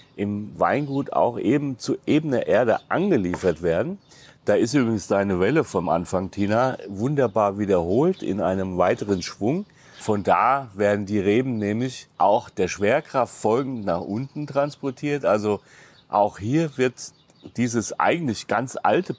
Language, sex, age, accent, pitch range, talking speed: German, male, 40-59, German, 95-130 Hz, 140 wpm